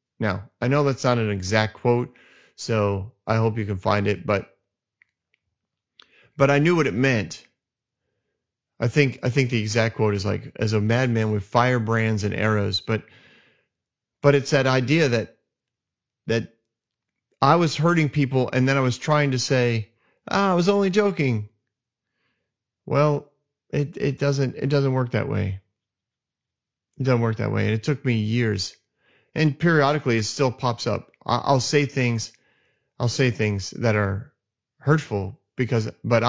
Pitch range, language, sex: 110-135 Hz, English, male